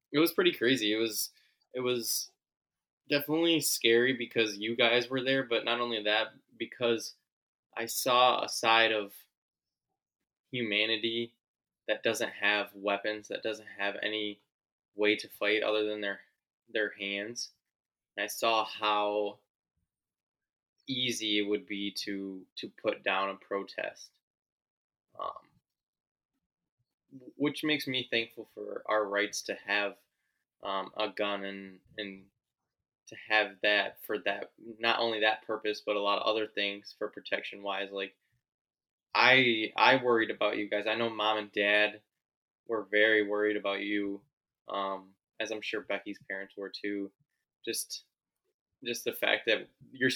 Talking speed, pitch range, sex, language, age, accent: 145 wpm, 100-115 Hz, male, English, 20-39, American